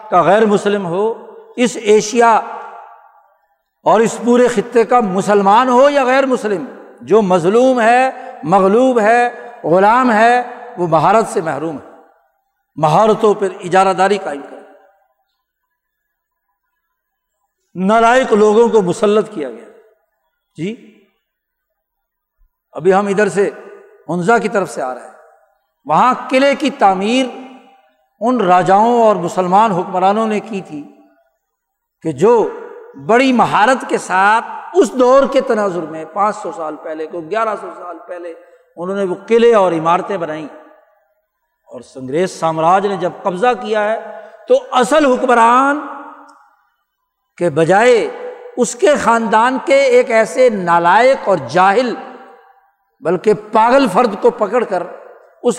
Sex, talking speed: male, 130 wpm